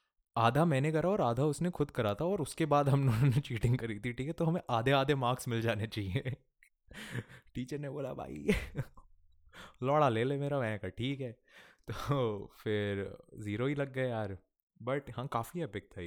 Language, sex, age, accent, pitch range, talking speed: Hindi, male, 20-39, native, 95-125 Hz, 190 wpm